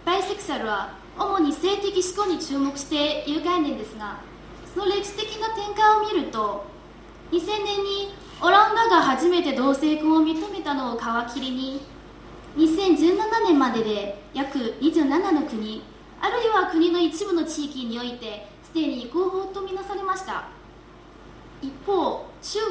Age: 20-39